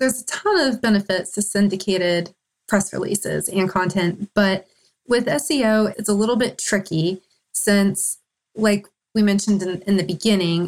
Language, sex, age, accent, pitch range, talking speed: English, female, 30-49, American, 180-205 Hz, 150 wpm